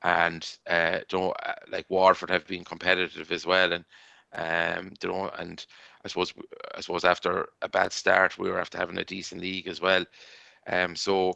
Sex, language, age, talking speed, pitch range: male, English, 20-39, 175 wpm, 90-100 Hz